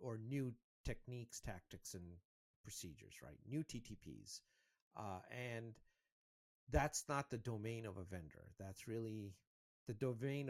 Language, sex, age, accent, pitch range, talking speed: English, male, 50-69, American, 90-120 Hz, 125 wpm